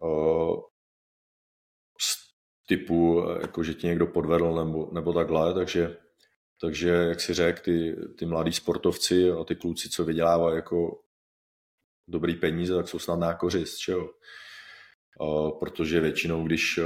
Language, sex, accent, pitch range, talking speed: Czech, male, native, 85-90 Hz, 120 wpm